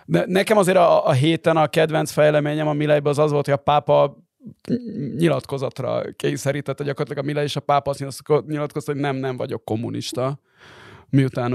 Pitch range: 125-155 Hz